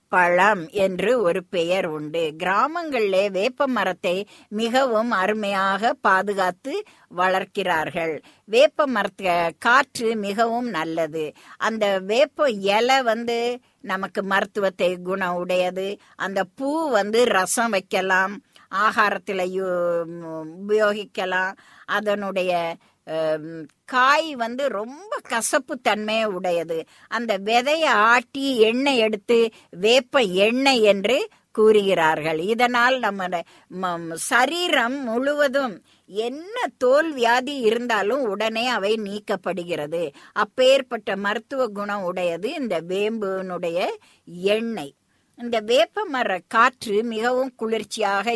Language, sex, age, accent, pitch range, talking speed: Tamil, female, 50-69, native, 185-245 Hz, 90 wpm